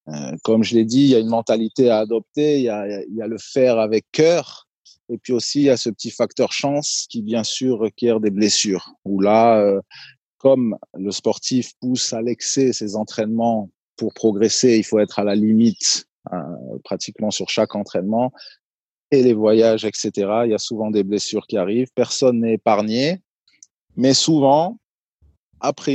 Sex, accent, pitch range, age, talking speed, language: male, French, 105-125 Hz, 30-49, 180 wpm, French